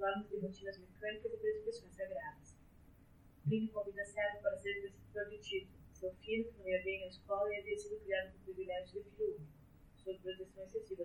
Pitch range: 180-215 Hz